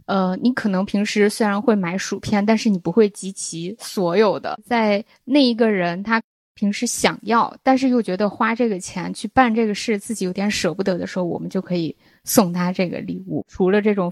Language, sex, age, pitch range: Chinese, female, 10-29, 185-240 Hz